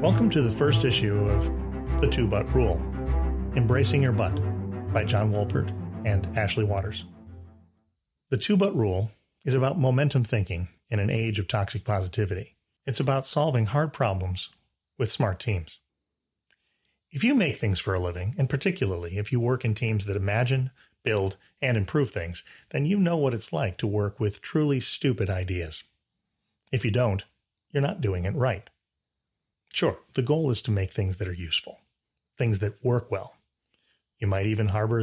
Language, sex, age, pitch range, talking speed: English, male, 40-59, 95-125 Hz, 165 wpm